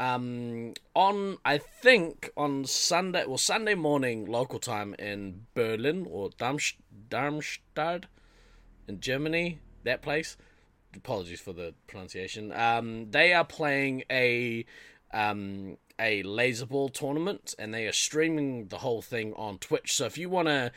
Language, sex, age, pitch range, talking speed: English, male, 20-39, 105-150 Hz, 135 wpm